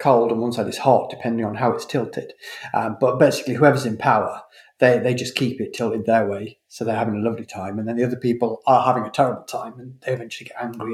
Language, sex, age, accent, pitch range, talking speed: English, male, 40-59, British, 115-140 Hz, 250 wpm